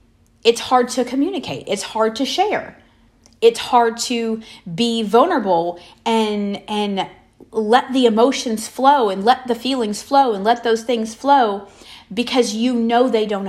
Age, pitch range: 30-49, 195-235 Hz